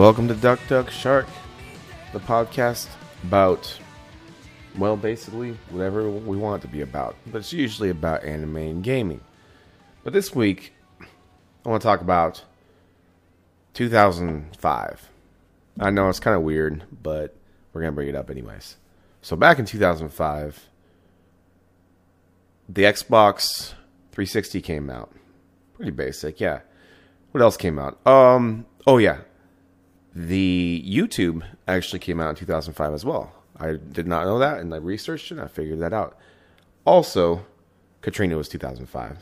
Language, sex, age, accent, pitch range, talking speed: English, male, 30-49, American, 85-100 Hz, 140 wpm